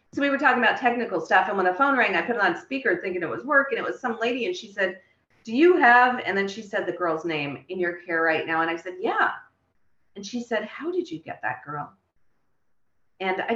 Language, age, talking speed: English, 40-59, 260 wpm